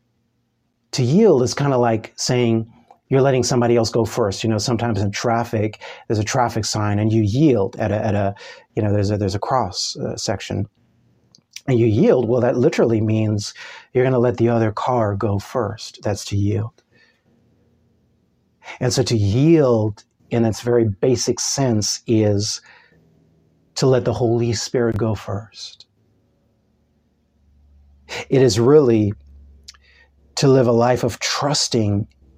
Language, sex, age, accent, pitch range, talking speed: English, male, 40-59, American, 105-120 Hz, 155 wpm